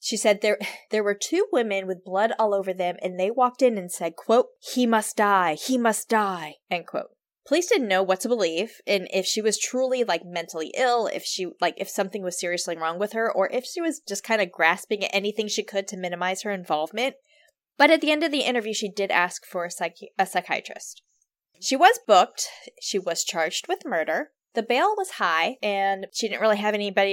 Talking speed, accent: 220 wpm, American